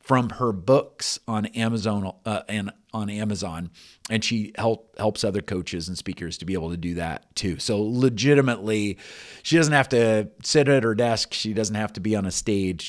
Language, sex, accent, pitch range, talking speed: English, male, American, 95-115 Hz, 195 wpm